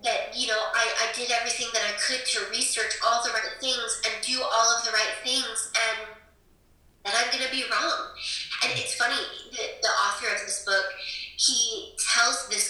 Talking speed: 200 wpm